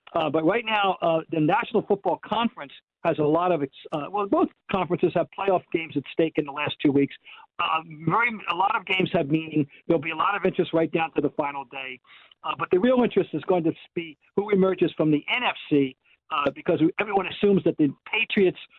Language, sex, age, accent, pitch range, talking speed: English, male, 50-69, American, 155-200 Hz, 230 wpm